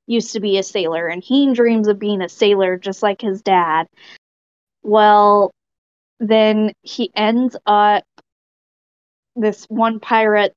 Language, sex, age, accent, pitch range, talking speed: English, female, 20-39, American, 195-230 Hz, 135 wpm